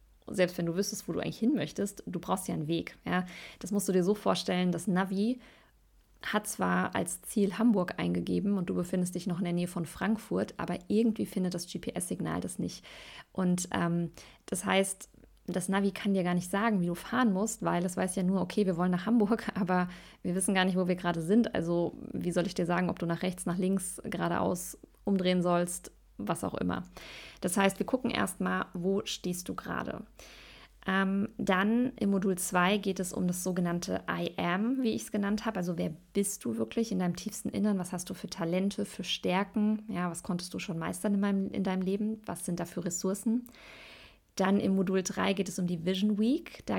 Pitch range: 180-205 Hz